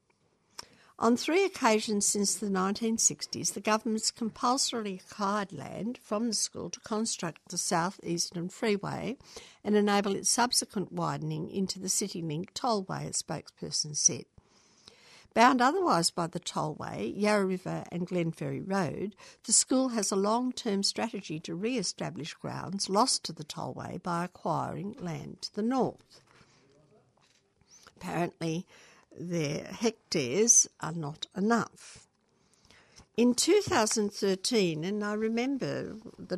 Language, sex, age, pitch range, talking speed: English, female, 60-79, 175-230 Hz, 120 wpm